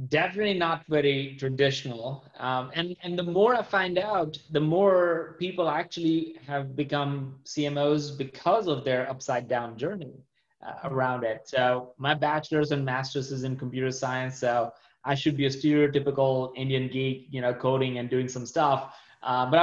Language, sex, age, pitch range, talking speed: English, male, 20-39, 130-160 Hz, 165 wpm